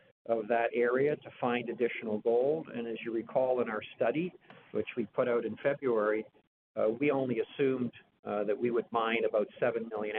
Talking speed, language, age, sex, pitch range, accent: 190 wpm, English, 50-69, male, 105-120 Hz, American